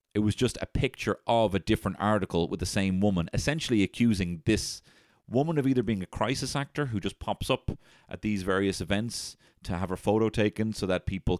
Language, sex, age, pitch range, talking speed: English, male, 30-49, 85-105 Hz, 205 wpm